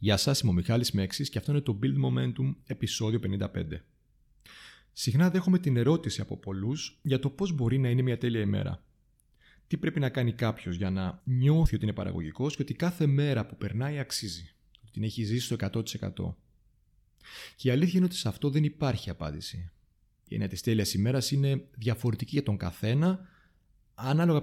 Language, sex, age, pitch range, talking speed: Greek, male, 30-49, 100-140 Hz, 180 wpm